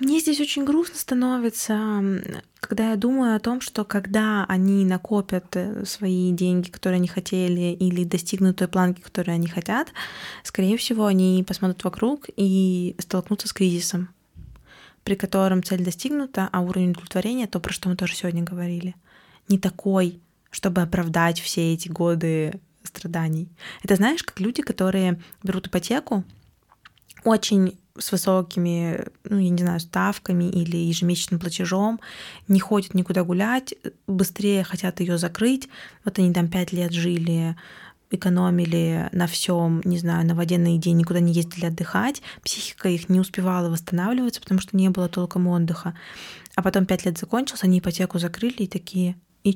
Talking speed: 150 wpm